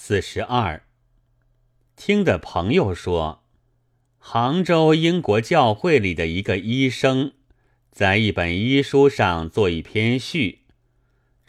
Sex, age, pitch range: male, 30-49, 95-125 Hz